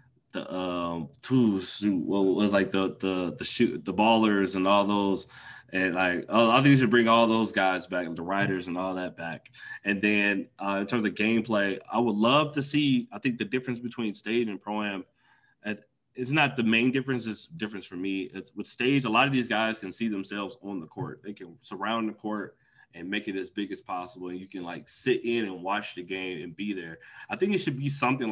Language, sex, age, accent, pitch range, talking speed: English, male, 20-39, American, 95-115 Hz, 230 wpm